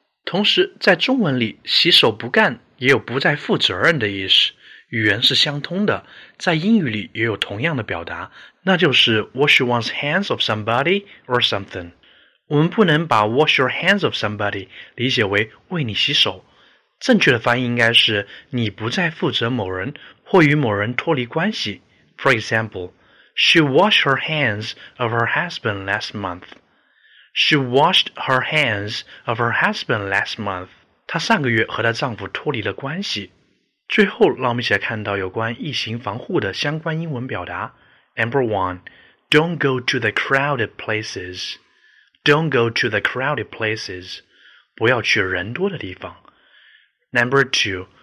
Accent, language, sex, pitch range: native, Chinese, male, 105-150 Hz